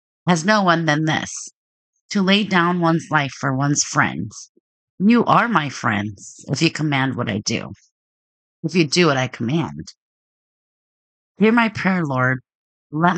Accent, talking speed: American, 155 wpm